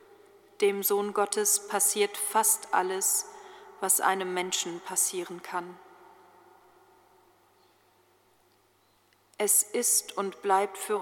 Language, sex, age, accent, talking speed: German, female, 40-59, German, 85 wpm